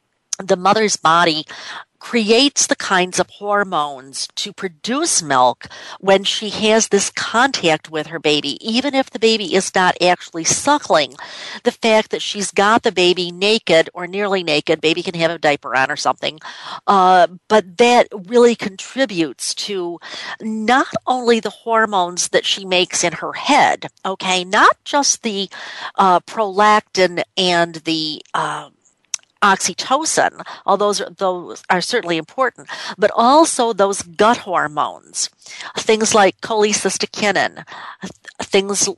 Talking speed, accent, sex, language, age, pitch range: 135 wpm, American, female, English, 50-69, 180-225 Hz